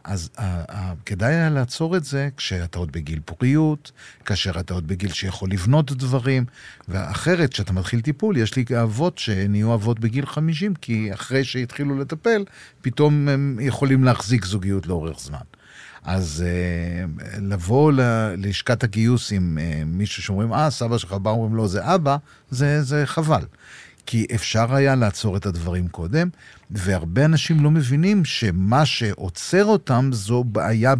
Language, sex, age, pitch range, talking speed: Hebrew, male, 50-69, 105-150 Hz, 140 wpm